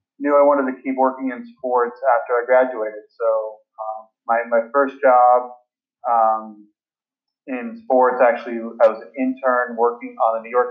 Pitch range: 115-135 Hz